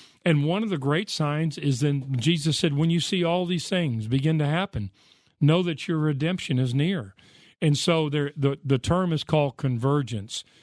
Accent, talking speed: American, 190 wpm